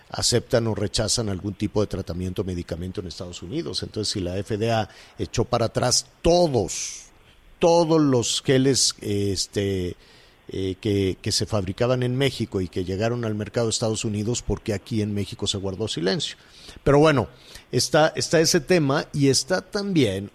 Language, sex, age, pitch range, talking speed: Spanish, male, 50-69, 105-130 Hz, 160 wpm